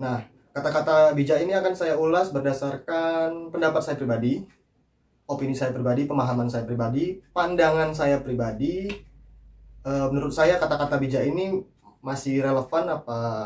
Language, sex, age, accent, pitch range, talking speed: Indonesian, male, 20-39, native, 125-155 Hz, 130 wpm